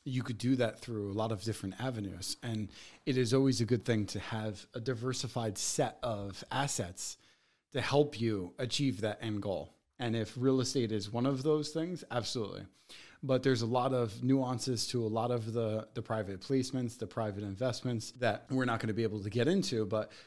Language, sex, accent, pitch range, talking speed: English, male, American, 105-125 Hz, 205 wpm